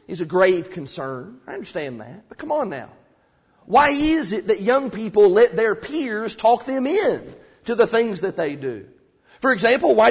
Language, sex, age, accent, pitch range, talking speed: English, male, 40-59, American, 230-335 Hz, 190 wpm